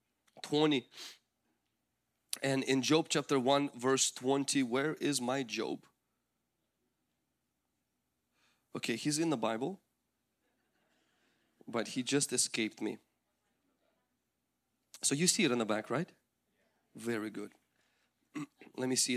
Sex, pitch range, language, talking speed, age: male, 115-150 Hz, English, 110 wpm, 30-49